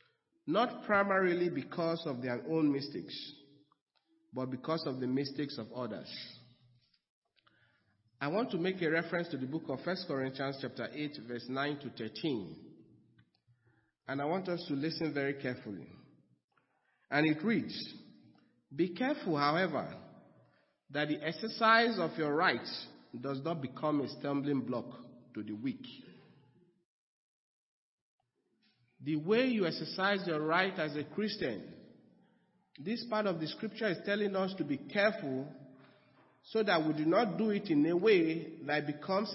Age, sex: 50-69, male